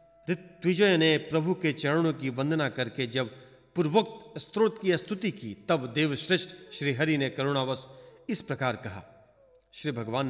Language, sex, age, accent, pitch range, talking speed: Hindi, male, 40-59, native, 130-180 Hz, 140 wpm